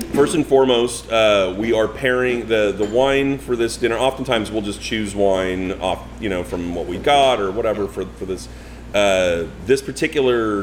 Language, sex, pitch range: English, male, 85-105 Hz